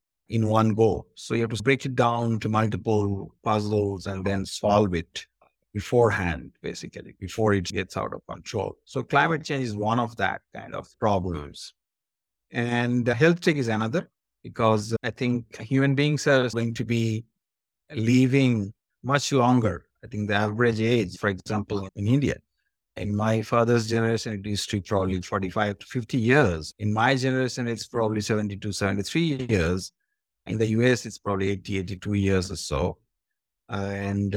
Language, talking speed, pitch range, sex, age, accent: English, 165 wpm, 100-130 Hz, male, 50-69, Indian